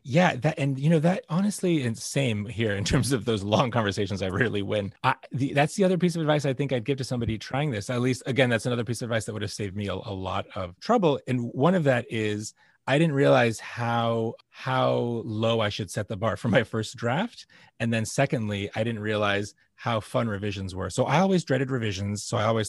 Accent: American